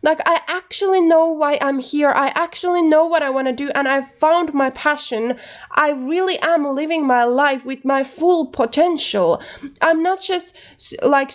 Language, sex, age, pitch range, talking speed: Finnish, female, 20-39, 235-310 Hz, 180 wpm